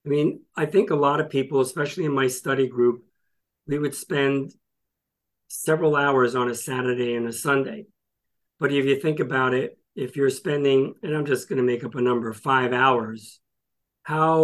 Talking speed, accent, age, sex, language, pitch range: 185 wpm, American, 50-69, male, English, 125-145 Hz